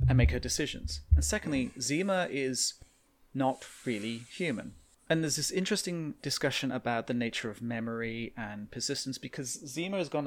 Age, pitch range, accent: 30-49, 115-140 Hz, British